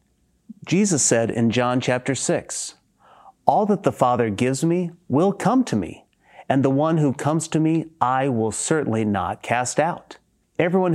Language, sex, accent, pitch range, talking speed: English, male, American, 120-160 Hz, 165 wpm